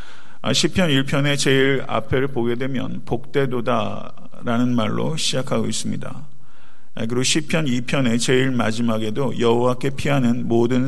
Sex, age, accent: male, 50-69, native